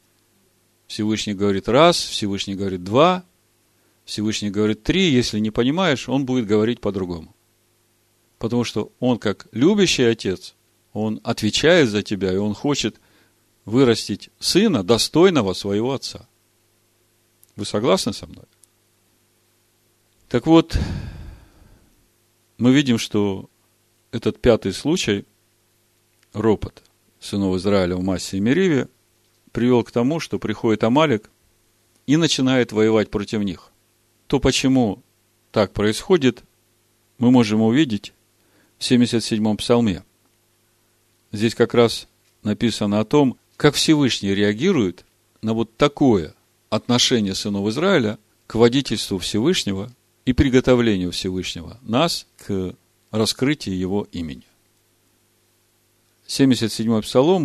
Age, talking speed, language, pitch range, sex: 40-59, 105 wpm, Russian, 100-120 Hz, male